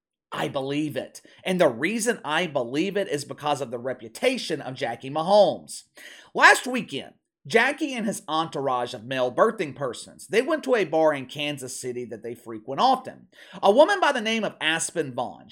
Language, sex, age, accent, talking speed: English, male, 30-49, American, 180 wpm